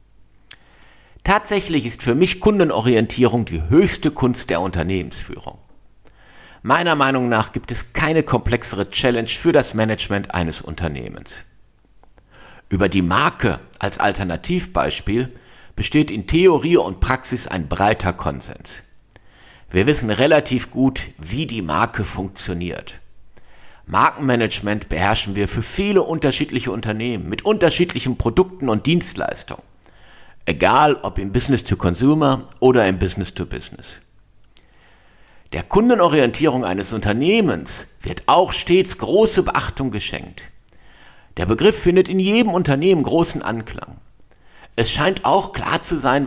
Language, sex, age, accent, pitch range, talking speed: German, male, 50-69, German, 100-150 Hz, 115 wpm